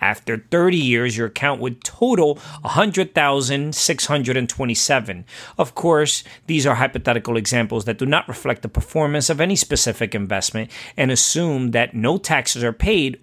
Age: 40-59